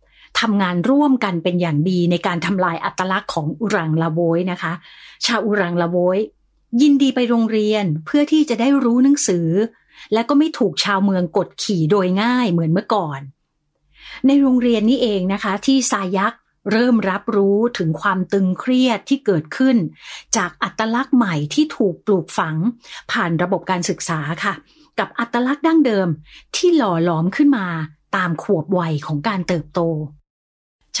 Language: Thai